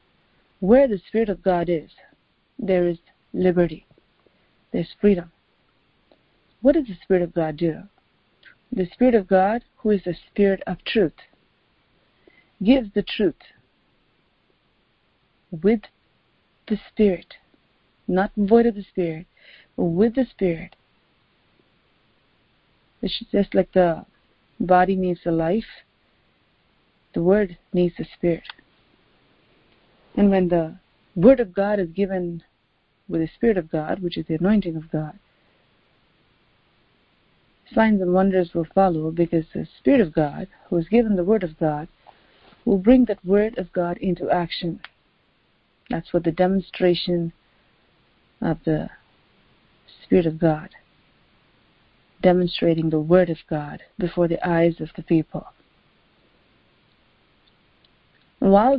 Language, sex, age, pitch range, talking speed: English, female, 40-59, 170-205 Hz, 125 wpm